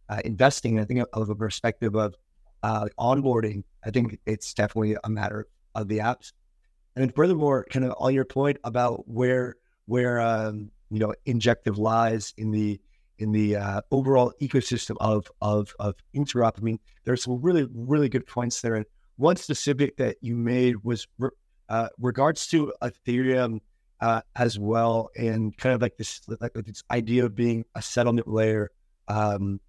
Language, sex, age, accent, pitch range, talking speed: English, male, 30-49, American, 110-125 Hz, 175 wpm